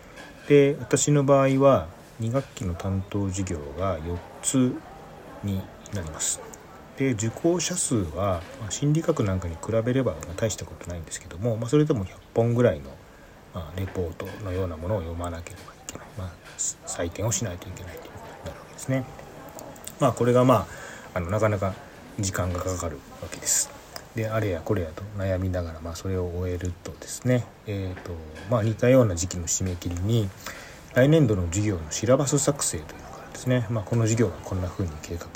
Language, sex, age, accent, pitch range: Japanese, male, 40-59, native, 90-120 Hz